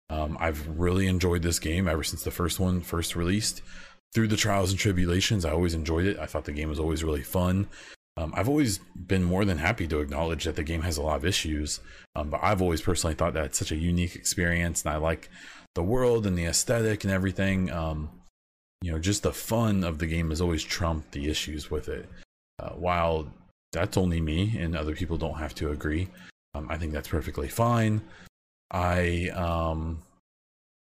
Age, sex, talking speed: 30-49, male, 205 wpm